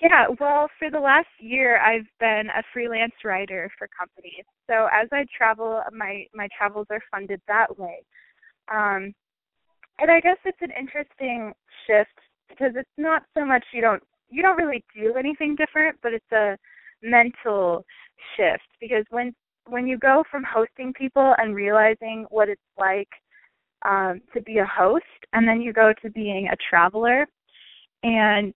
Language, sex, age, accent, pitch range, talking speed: English, female, 20-39, American, 200-255 Hz, 160 wpm